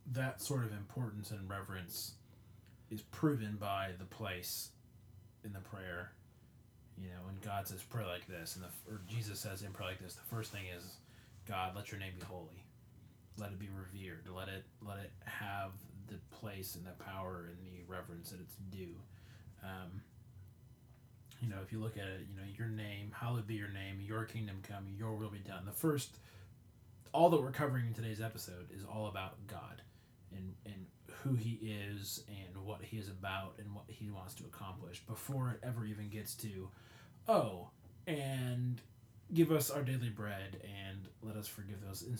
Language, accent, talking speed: English, American, 180 wpm